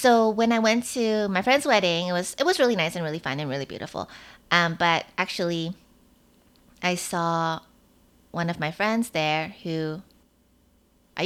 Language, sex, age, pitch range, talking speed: English, female, 20-39, 160-220 Hz, 170 wpm